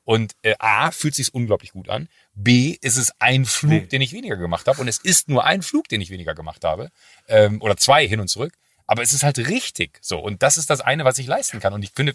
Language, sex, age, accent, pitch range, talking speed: German, male, 40-59, German, 100-130 Hz, 260 wpm